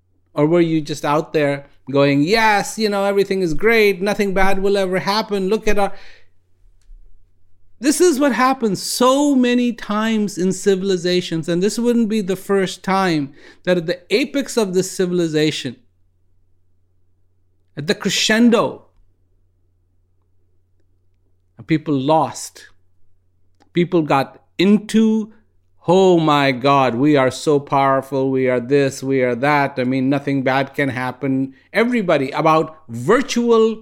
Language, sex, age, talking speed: English, male, 50-69, 130 wpm